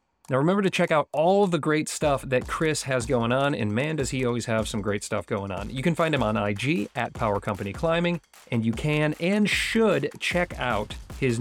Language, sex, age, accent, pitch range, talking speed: English, male, 30-49, American, 115-160 Hz, 225 wpm